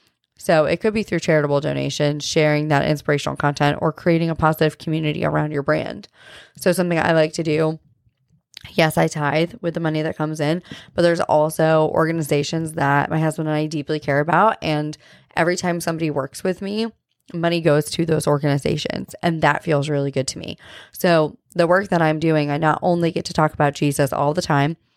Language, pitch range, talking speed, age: English, 150-170 Hz, 195 wpm, 20-39